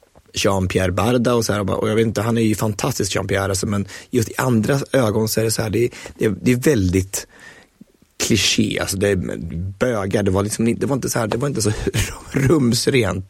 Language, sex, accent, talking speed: Swedish, male, native, 210 wpm